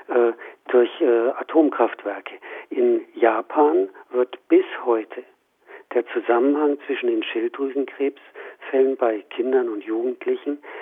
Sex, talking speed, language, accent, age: male, 95 wpm, German, German, 50-69